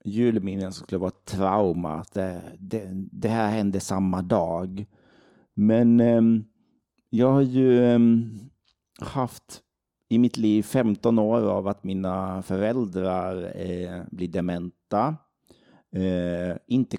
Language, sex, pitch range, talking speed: Swedish, male, 95-115 Hz, 115 wpm